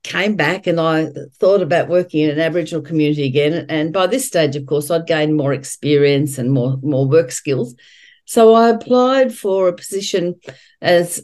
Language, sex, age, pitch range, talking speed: English, female, 50-69, 145-200 Hz, 180 wpm